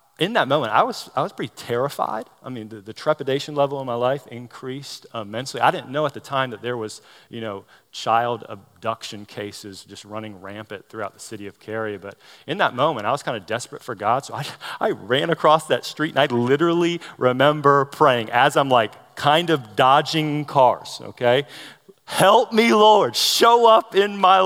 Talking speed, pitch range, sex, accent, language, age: 195 wpm, 110-155 Hz, male, American, English, 40-59